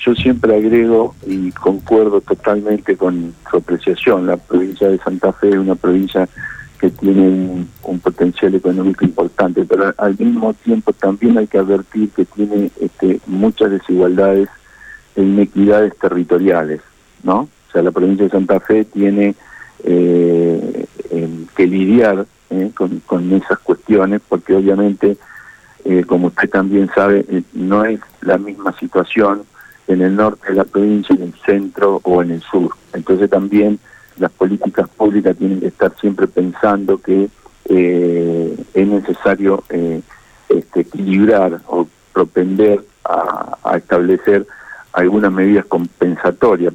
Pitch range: 90-100 Hz